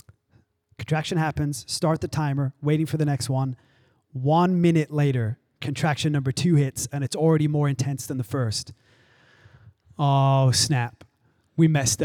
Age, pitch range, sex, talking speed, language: 20-39, 130-190 Hz, male, 145 wpm, English